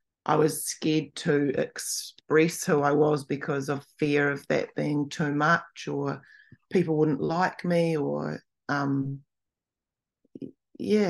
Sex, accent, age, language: female, Australian, 30-49, English